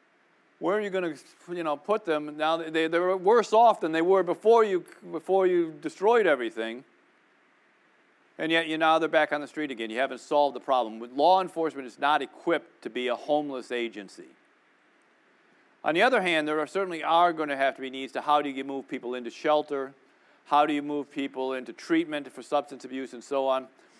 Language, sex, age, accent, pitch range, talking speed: English, male, 40-59, American, 120-155 Hz, 215 wpm